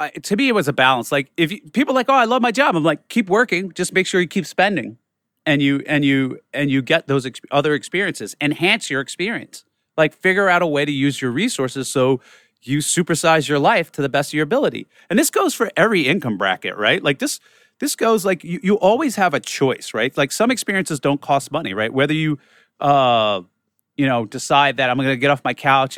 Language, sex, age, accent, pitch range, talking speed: English, male, 30-49, American, 130-175 Hz, 235 wpm